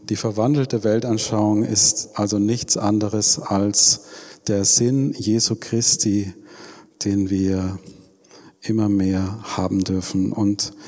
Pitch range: 105-125 Hz